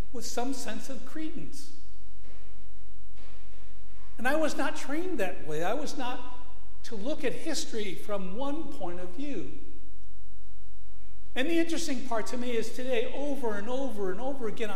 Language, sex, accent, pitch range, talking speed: English, male, American, 160-250 Hz, 155 wpm